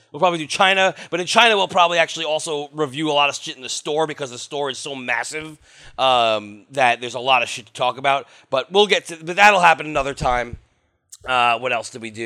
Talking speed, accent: 245 wpm, American